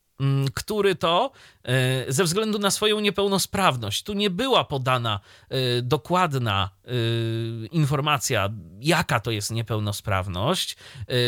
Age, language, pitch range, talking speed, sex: 30-49, Polish, 115-165 Hz, 90 wpm, male